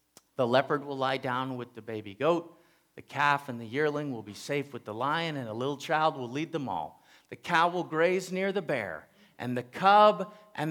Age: 50-69